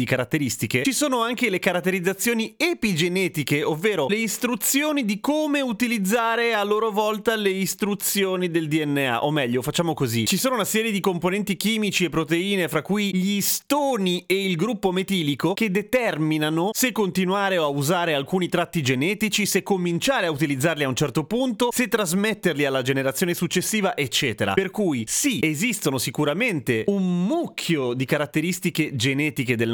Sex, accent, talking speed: male, native, 150 wpm